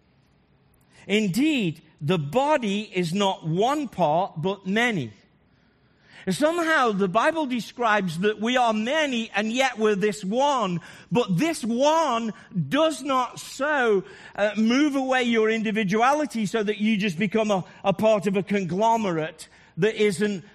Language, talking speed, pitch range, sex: English, 135 wpm, 180-230 Hz, male